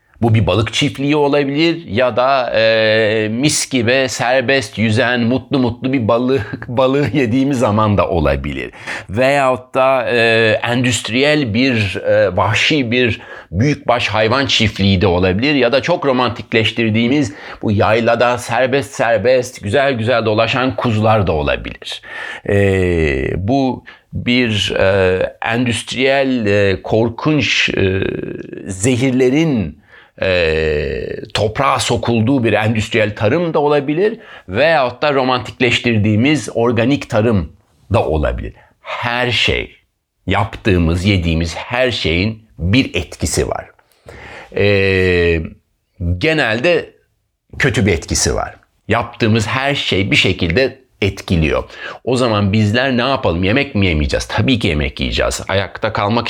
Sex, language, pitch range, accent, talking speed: male, Turkish, 100-130 Hz, native, 115 wpm